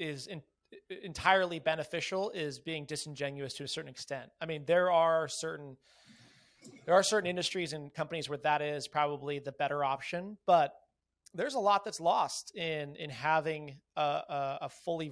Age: 30-49